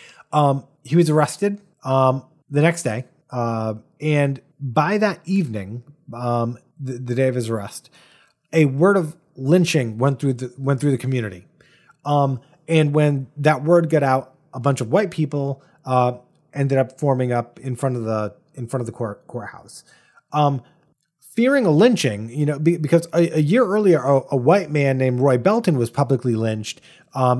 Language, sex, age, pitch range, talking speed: English, male, 30-49, 130-170 Hz, 165 wpm